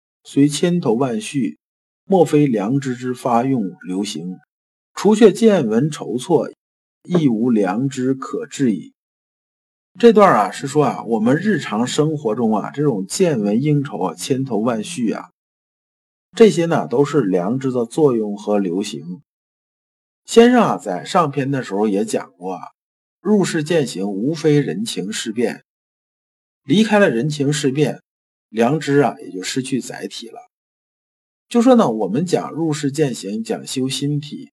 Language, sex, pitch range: Chinese, male, 130-205 Hz